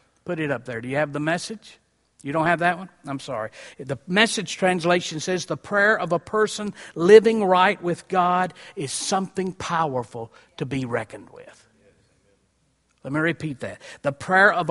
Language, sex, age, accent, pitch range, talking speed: English, male, 50-69, American, 135-180 Hz, 175 wpm